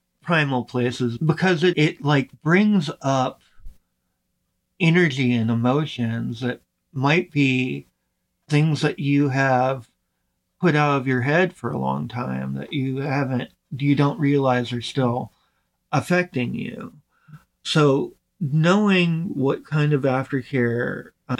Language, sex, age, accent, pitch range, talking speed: English, male, 40-59, American, 125-155 Hz, 120 wpm